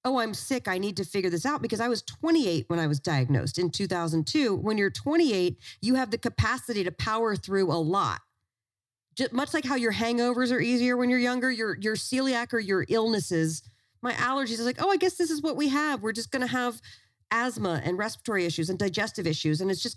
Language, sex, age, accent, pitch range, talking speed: English, female, 40-59, American, 135-225 Hz, 220 wpm